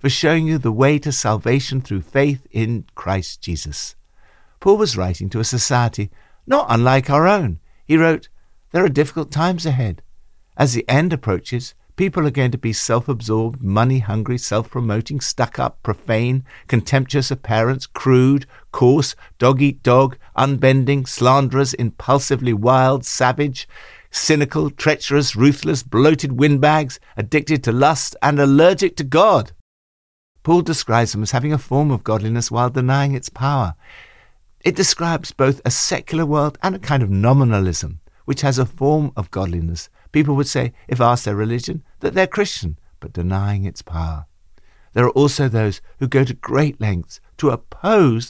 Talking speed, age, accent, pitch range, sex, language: 150 wpm, 60-79, British, 105-140 Hz, male, English